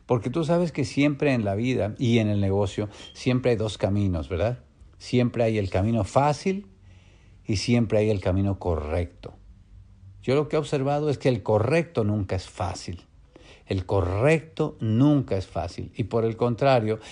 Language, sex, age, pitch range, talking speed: English, male, 50-69, 100-125 Hz, 170 wpm